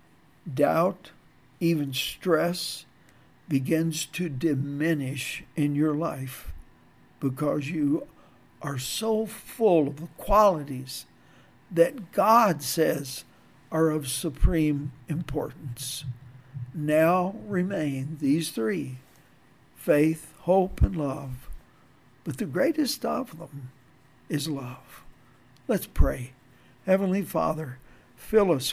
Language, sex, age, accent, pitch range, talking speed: English, male, 60-79, American, 135-170 Hz, 95 wpm